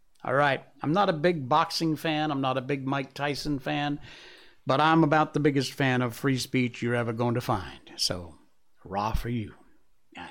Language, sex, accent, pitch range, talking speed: English, male, American, 125-155 Hz, 200 wpm